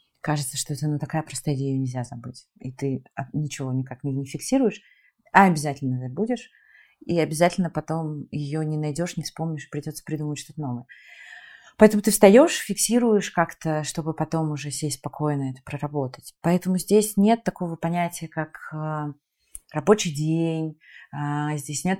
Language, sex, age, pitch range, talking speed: Russian, female, 30-49, 140-165 Hz, 145 wpm